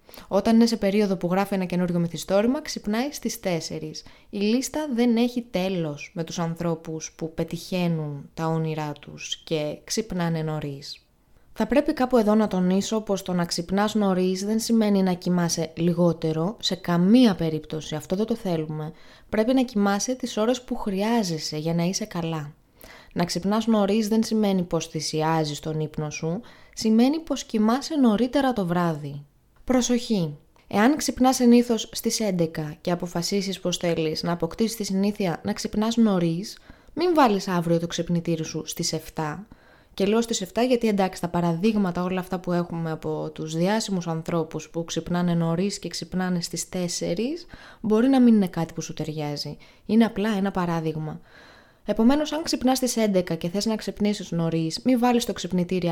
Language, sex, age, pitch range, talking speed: Greek, female, 20-39, 165-220 Hz, 165 wpm